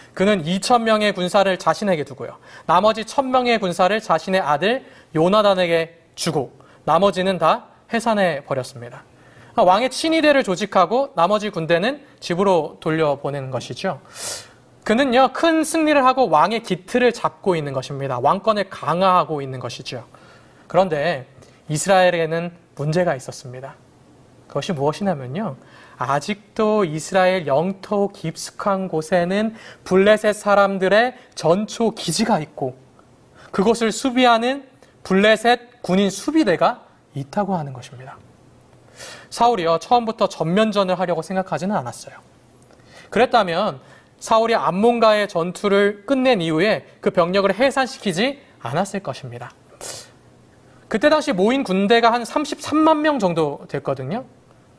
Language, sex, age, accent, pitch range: Korean, male, 20-39, native, 155-225 Hz